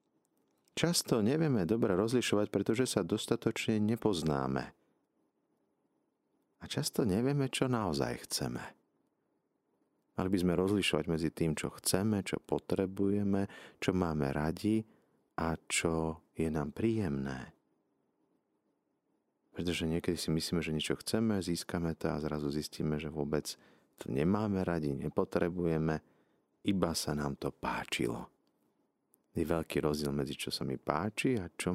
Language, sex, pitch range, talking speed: Slovak, male, 75-100 Hz, 125 wpm